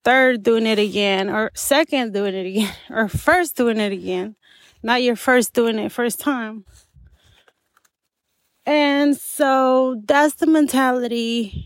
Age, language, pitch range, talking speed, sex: 30-49, English, 205-250 Hz, 135 wpm, female